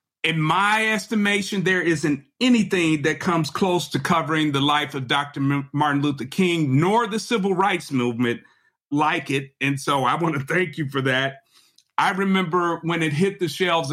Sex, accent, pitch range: male, American, 155-215 Hz